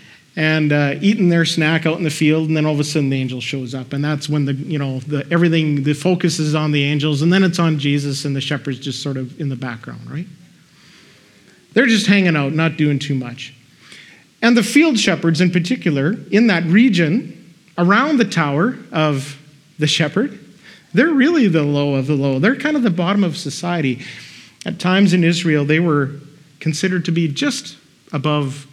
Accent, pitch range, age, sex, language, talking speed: American, 145-175 Hz, 40-59, male, English, 200 wpm